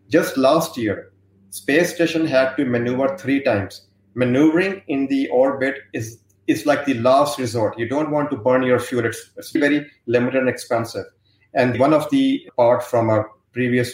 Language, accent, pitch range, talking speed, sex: English, Indian, 120-145 Hz, 170 wpm, male